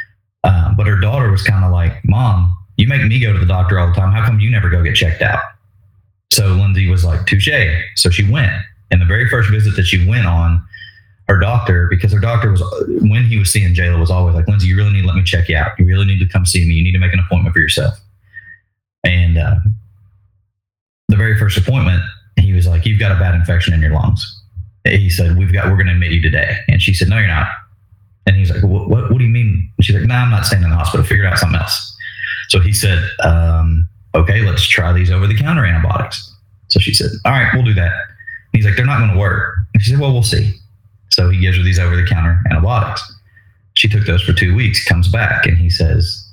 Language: English